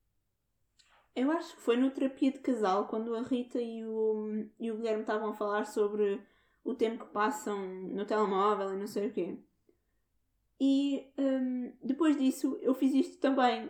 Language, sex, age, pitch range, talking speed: Portuguese, female, 20-39, 205-260 Hz, 160 wpm